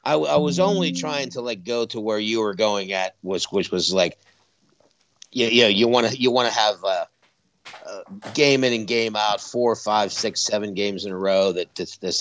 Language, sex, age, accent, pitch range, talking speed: English, male, 50-69, American, 100-130 Hz, 215 wpm